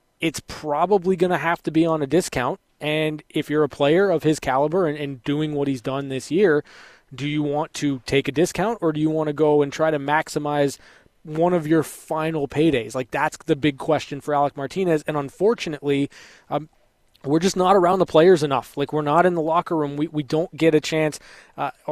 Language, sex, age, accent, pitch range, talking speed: English, male, 20-39, American, 140-160 Hz, 220 wpm